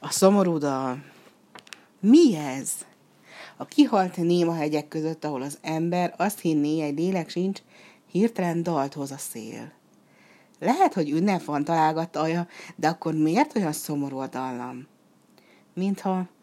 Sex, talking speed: female, 135 wpm